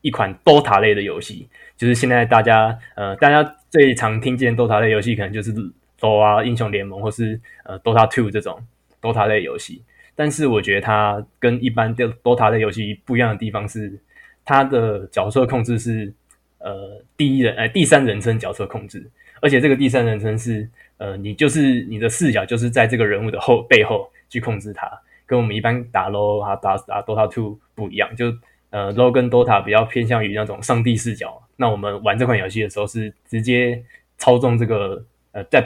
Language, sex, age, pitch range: Chinese, male, 20-39, 105-125 Hz